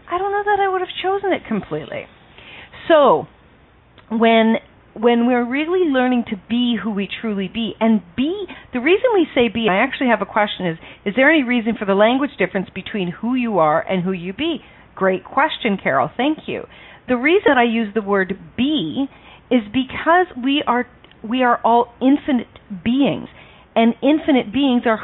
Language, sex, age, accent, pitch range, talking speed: English, female, 40-59, American, 195-255 Hz, 180 wpm